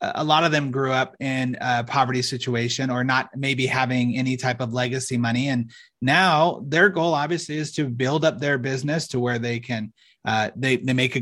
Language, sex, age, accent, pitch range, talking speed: English, male, 30-49, American, 120-140 Hz, 210 wpm